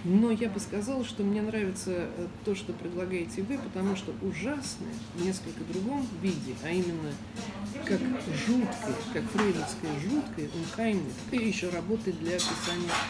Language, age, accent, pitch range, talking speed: Russian, 40-59, native, 180-215 Hz, 140 wpm